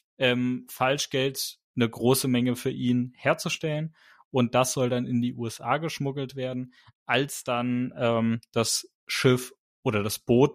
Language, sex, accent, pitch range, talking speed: German, male, German, 115-140 Hz, 140 wpm